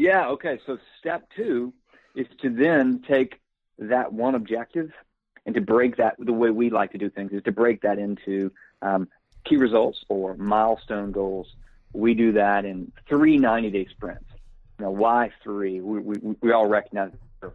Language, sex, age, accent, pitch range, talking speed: English, male, 40-59, American, 105-140 Hz, 170 wpm